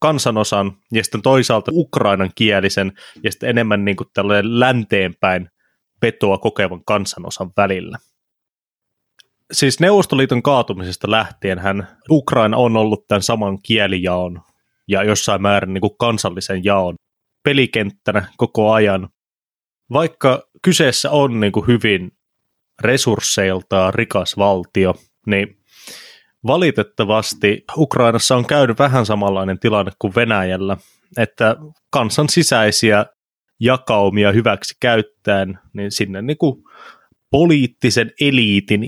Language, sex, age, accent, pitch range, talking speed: Finnish, male, 20-39, native, 100-125 Hz, 95 wpm